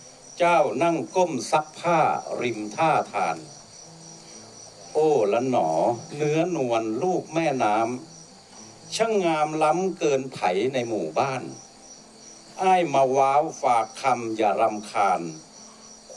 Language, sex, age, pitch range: Thai, male, 60-79, 110-160 Hz